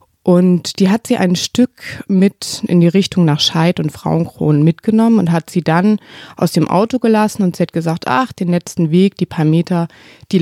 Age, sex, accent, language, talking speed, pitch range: 20-39, female, German, German, 200 wpm, 165-205 Hz